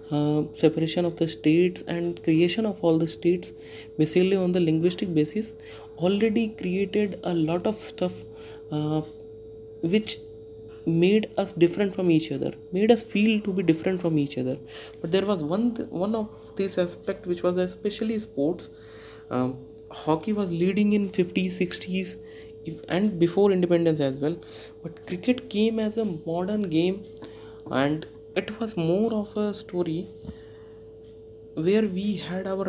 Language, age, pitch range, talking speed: English, 30-49, 125-205 Hz, 150 wpm